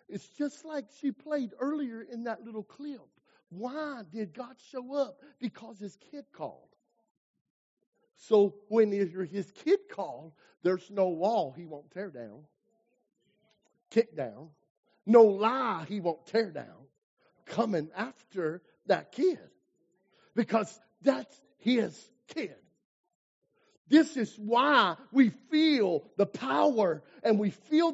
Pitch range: 210-315 Hz